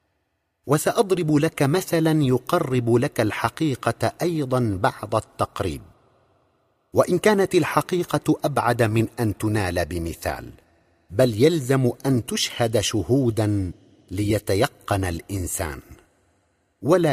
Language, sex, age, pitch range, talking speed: Arabic, male, 50-69, 100-155 Hz, 90 wpm